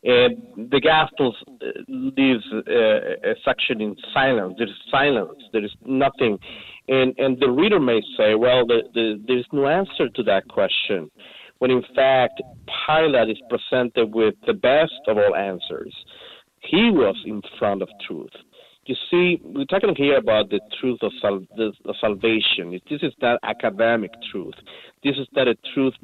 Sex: male